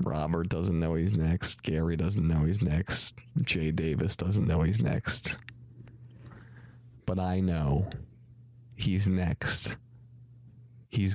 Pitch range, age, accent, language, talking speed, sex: 90-120 Hz, 40-59, American, English, 120 wpm, male